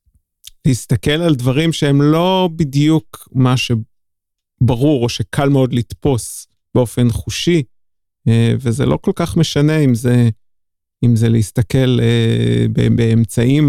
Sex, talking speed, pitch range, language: male, 110 wpm, 115-145 Hz, Hebrew